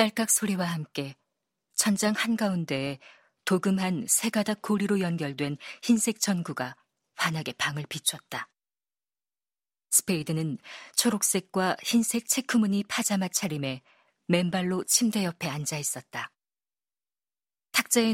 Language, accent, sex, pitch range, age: Korean, native, female, 160-205 Hz, 40-59